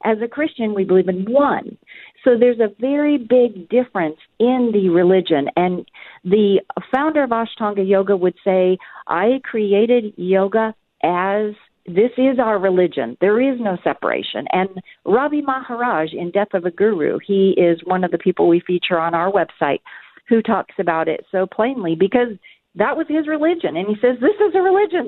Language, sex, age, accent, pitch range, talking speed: English, female, 50-69, American, 190-265 Hz, 175 wpm